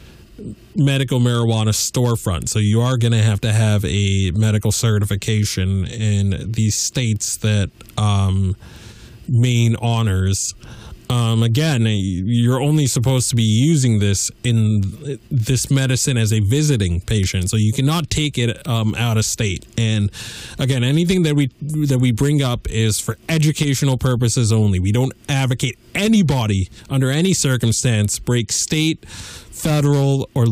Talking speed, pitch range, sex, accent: 135 wpm, 100-125 Hz, male, American